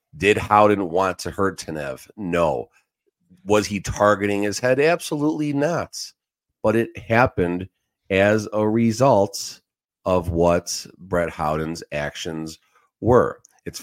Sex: male